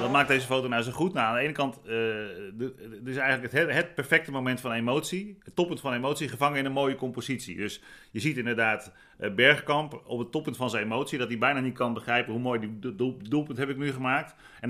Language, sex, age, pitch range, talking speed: Dutch, male, 40-59, 115-135 Hz, 235 wpm